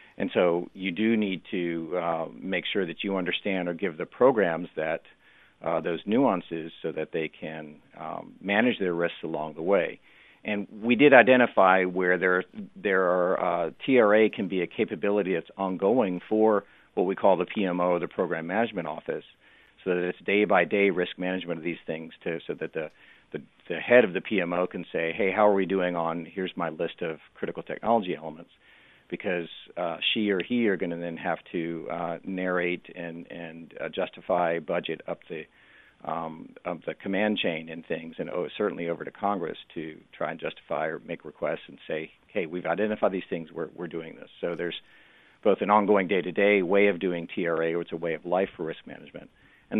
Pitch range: 85-100 Hz